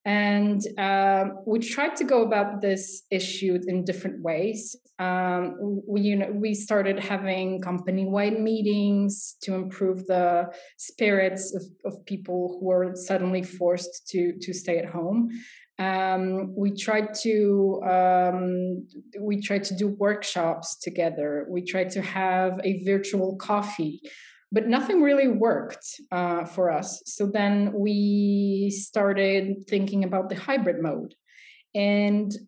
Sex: female